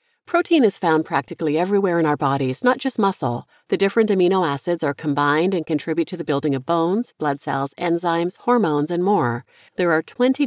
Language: English